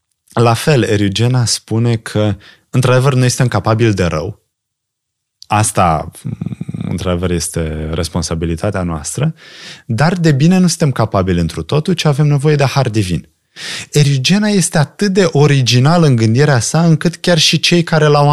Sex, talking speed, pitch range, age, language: male, 145 wpm, 90-140 Hz, 20-39, Romanian